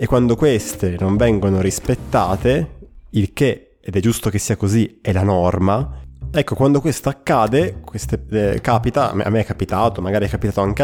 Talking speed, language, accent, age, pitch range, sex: 175 wpm, Italian, native, 20-39, 100-120 Hz, male